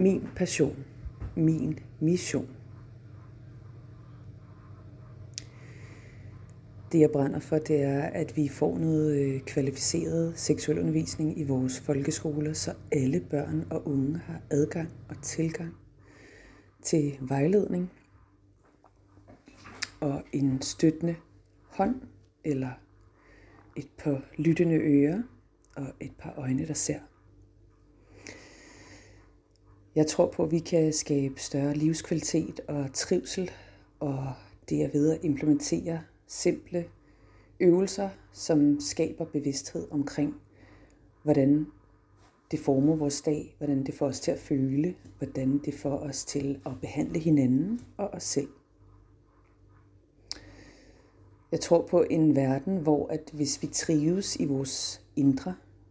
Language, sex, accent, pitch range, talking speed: Danish, female, native, 110-155 Hz, 110 wpm